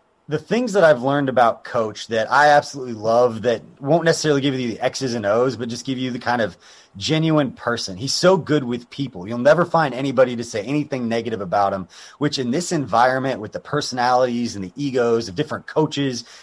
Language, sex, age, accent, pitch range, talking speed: English, male, 30-49, American, 115-150 Hz, 210 wpm